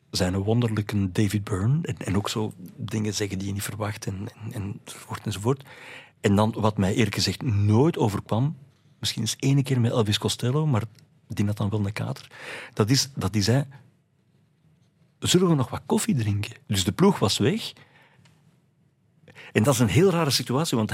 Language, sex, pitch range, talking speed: Dutch, male, 110-140 Hz, 185 wpm